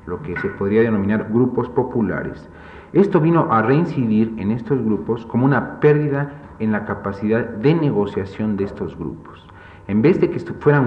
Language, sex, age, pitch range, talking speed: Spanish, male, 40-59, 105-130 Hz, 170 wpm